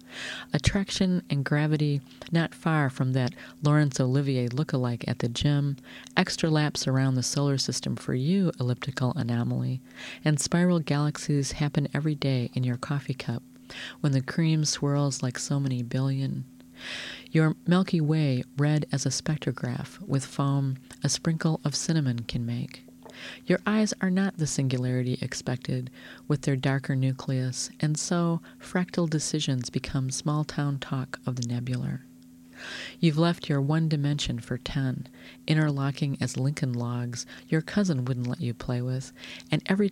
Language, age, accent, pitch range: English, 40-59, American, 125-150 Hz